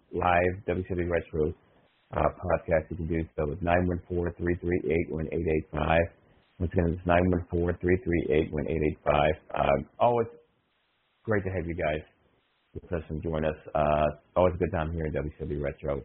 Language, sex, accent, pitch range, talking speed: English, male, American, 85-100 Hz, 145 wpm